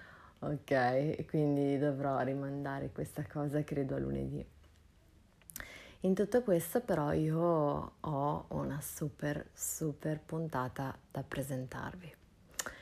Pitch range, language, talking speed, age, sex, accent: 140-160 Hz, Italian, 100 wpm, 30-49, female, native